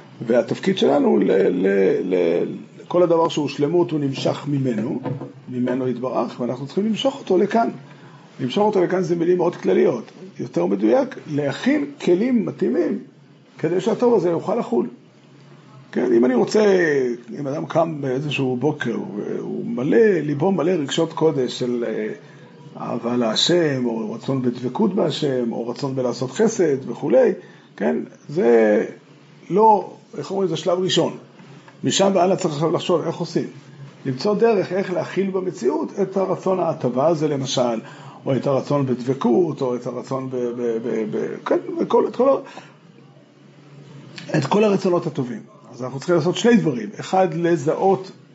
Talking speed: 140 wpm